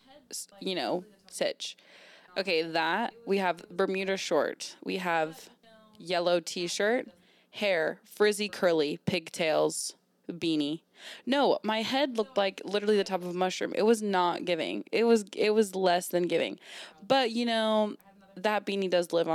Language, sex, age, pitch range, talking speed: English, female, 20-39, 165-205 Hz, 145 wpm